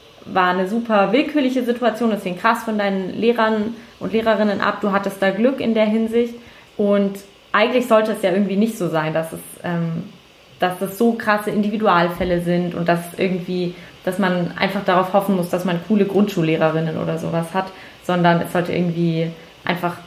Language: German